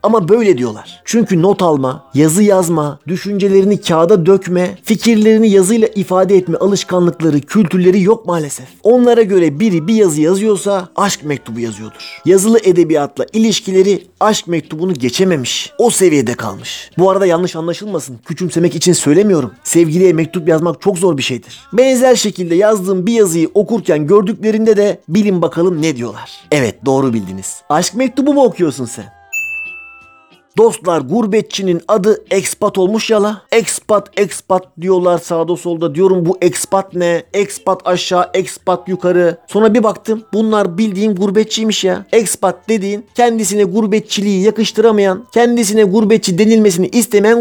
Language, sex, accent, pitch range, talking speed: Turkish, male, native, 165-215 Hz, 135 wpm